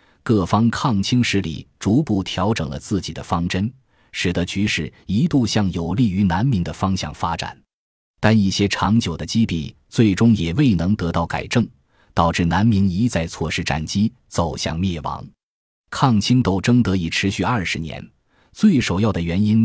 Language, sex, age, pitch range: Chinese, male, 20-39, 85-115 Hz